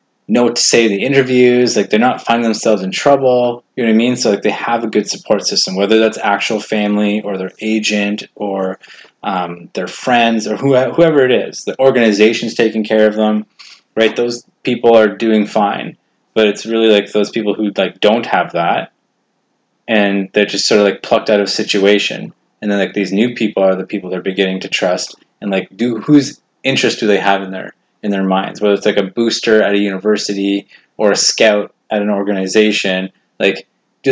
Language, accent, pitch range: English, American, 100-115 Hz